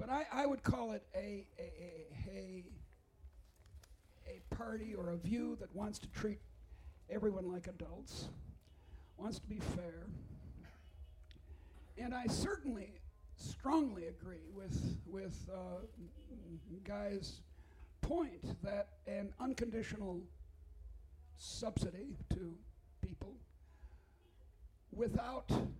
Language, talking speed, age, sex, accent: English, 100 wpm, 60-79, male, American